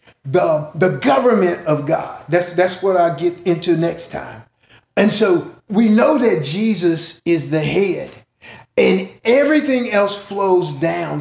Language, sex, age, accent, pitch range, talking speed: English, male, 40-59, American, 155-200 Hz, 145 wpm